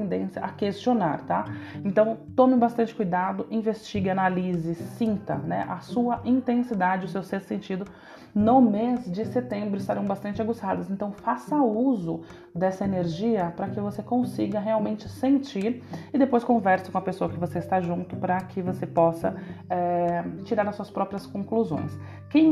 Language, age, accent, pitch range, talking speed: Portuguese, 30-49, Brazilian, 180-220 Hz, 155 wpm